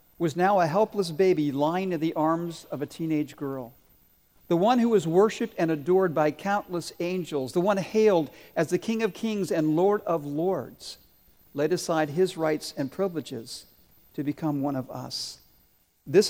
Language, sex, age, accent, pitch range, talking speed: English, male, 50-69, American, 145-190 Hz, 175 wpm